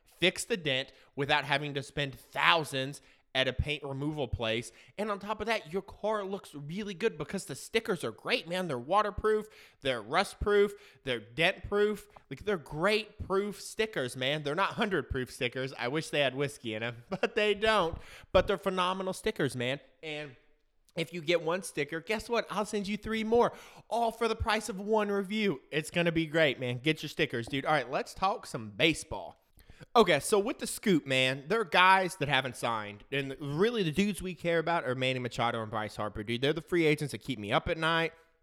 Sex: male